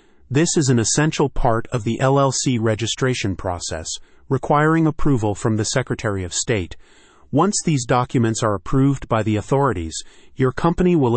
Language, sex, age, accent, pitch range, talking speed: English, male, 30-49, American, 110-135 Hz, 150 wpm